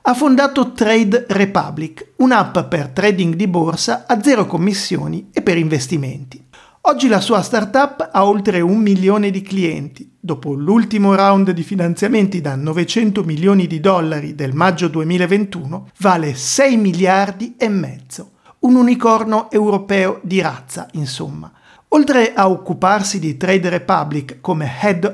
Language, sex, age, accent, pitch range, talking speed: Italian, male, 50-69, native, 170-225 Hz, 135 wpm